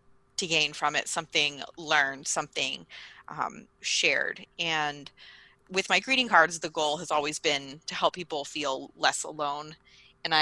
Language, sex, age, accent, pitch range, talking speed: English, female, 20-39, American, 150-185 Hz, 150 wpm